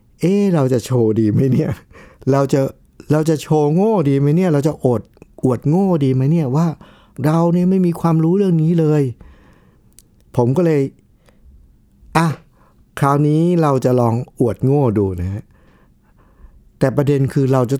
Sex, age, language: male, 60-79, Thai